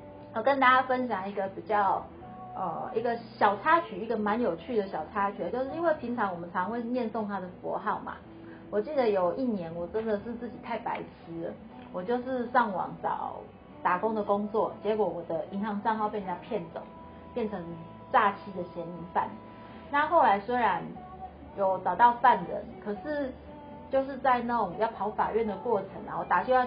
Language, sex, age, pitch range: Chinese, female, 30-49, 190-250 Hz